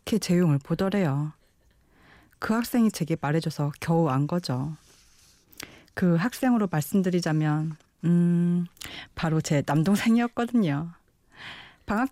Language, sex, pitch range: Korean, female, 160-220 Hz